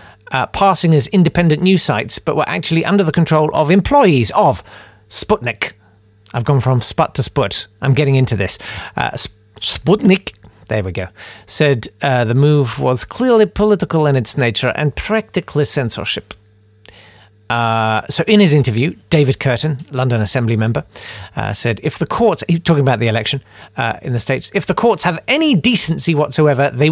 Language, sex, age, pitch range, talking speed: English, male, 40-59, 105-170 Hz, 170 wpm